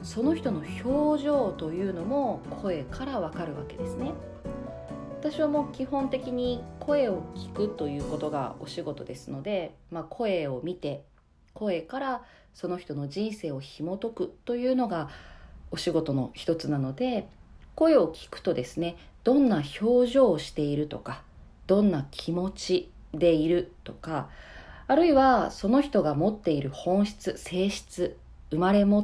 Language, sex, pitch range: Japanese, female, 150-245 Hz